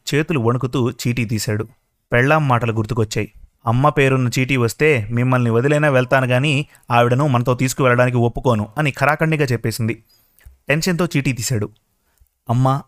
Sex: male